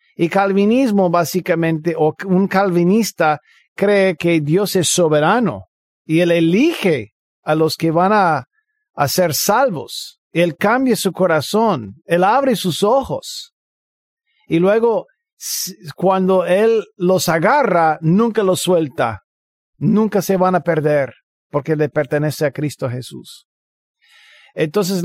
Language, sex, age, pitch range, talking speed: Spanish, male, 50-69, 155-205 Hz, 120 wpm